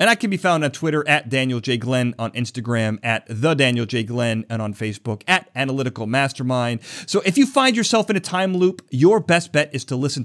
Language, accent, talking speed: English, American, 230 wpm